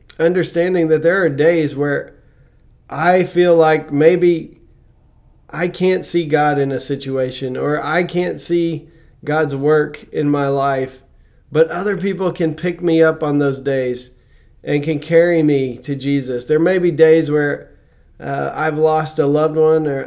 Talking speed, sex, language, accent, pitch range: 160 wpm, male, English, American, 140-165 Hz